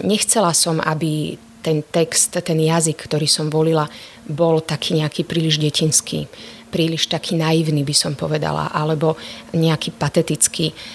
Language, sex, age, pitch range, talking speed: Slovak, female, 30-49, 155-190 Hz, 130 wpm